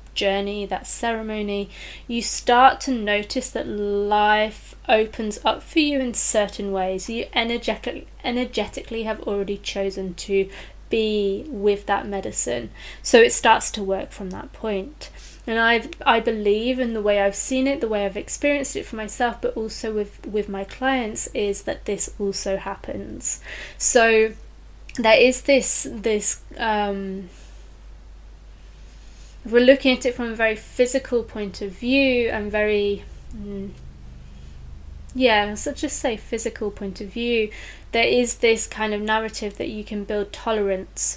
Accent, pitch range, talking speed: British, 200-230 Hz, 150 wpm